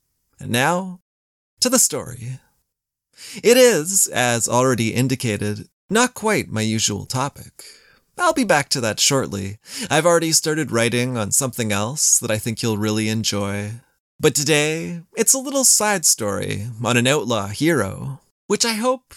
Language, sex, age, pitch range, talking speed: English, male, 20-39, 115-175 Hz, 150 wpm